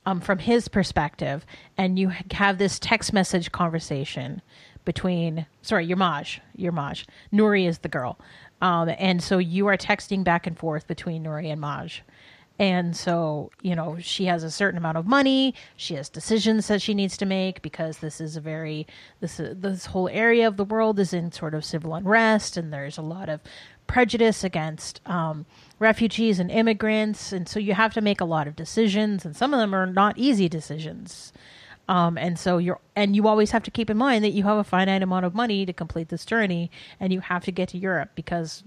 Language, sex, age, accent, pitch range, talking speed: English, female, 30-49, American, 160-205 Hz, 205 wpm